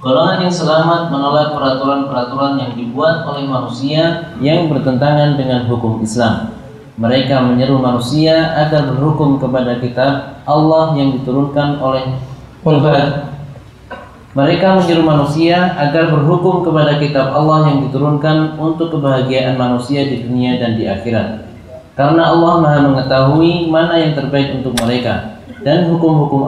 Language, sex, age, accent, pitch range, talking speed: Indonesian, male, 20-39, native, 130-155 Hz, 125 wpm